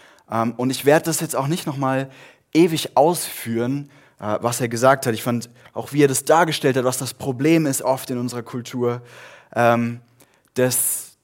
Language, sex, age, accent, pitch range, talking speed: German, male, 20-39, German, 120-150 Hz, 165 wpm